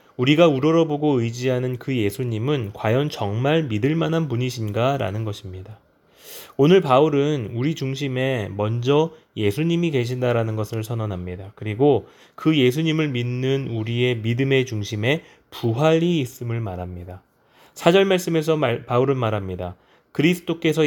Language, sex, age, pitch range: Korean, male, 20-39, 115-150 Hz